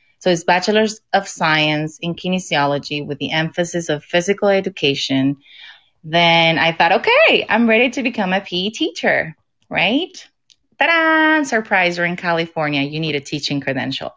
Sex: female